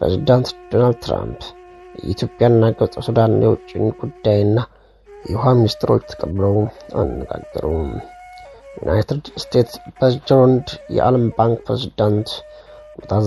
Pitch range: 105-150 Hz